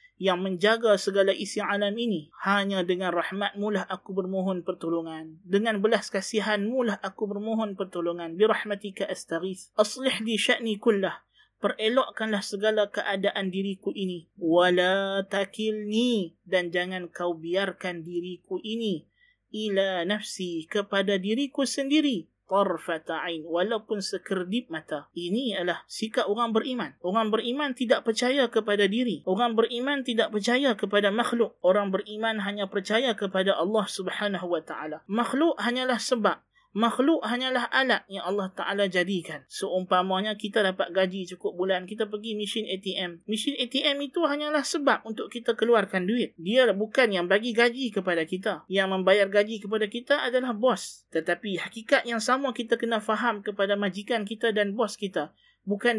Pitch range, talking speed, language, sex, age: 190-235 Hz, 135 wpm, Malay, male, 20-39